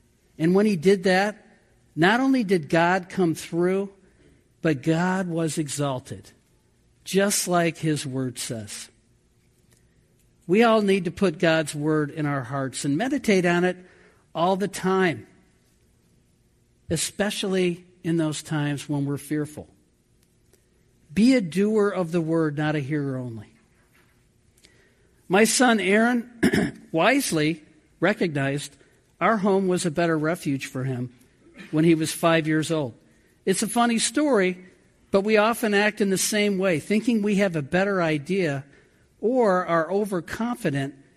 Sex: male